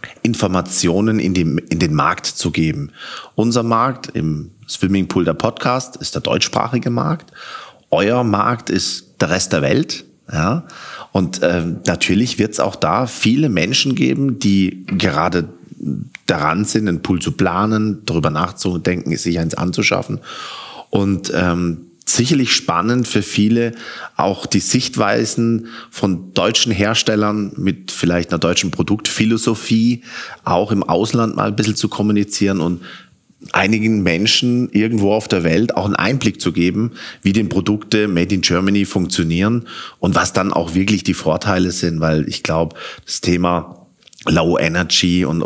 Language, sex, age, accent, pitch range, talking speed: German, male, 30-49, German, 85-110 Hz, 145 wpm